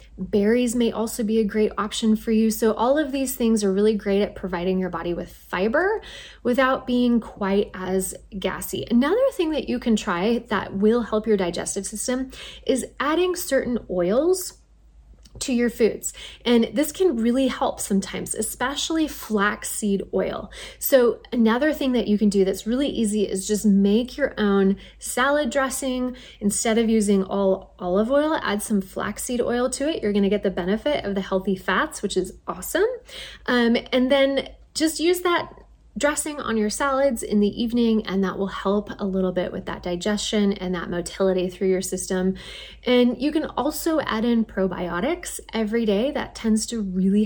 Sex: female